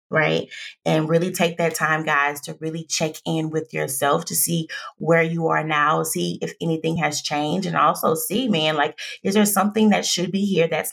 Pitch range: 155-205 Hz